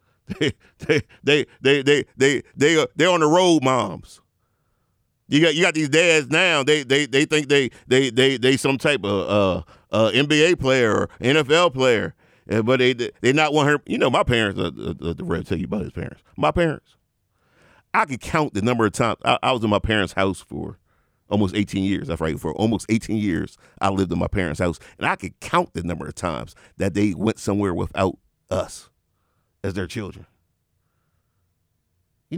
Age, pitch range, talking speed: 40-59, 95-135 Hz, 200 wpm